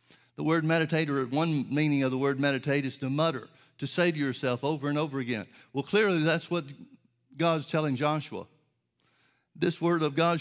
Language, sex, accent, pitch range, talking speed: English, male, American, 135-165 Hz, 185 wpm